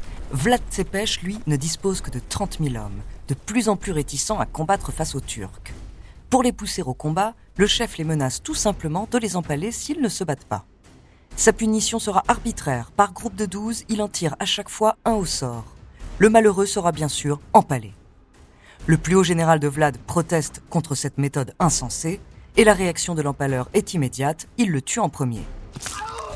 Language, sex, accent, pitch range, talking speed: French, female, French, 130-200 Hz, 195 wpm